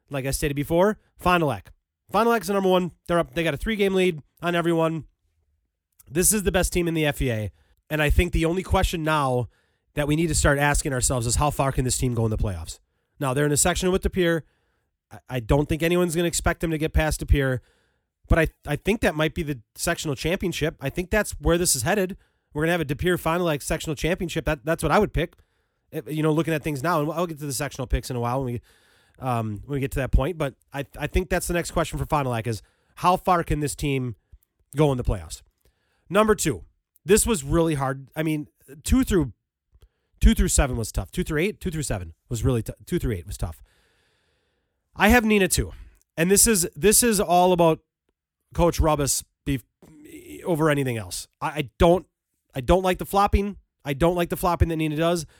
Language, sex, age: English, male, 30-49